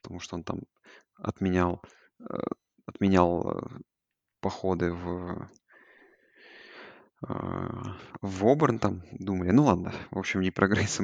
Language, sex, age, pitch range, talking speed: Russian, male, 20-39, 95-120 Hz, 105 wpm